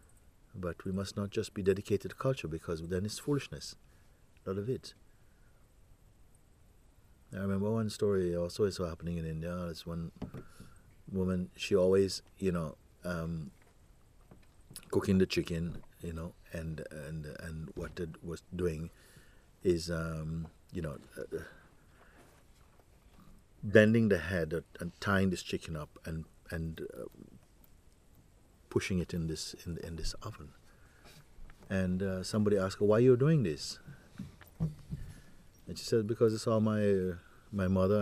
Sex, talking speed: male, 145 wpm